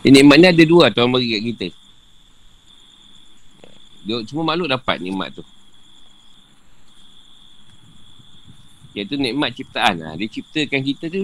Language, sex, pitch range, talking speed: Malay, male, 100-140 Hz, 125 wpm